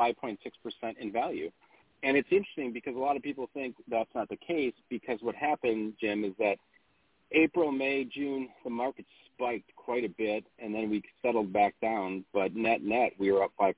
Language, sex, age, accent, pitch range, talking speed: English, male, 40-59, American, 100-140 Hz, 205 wpm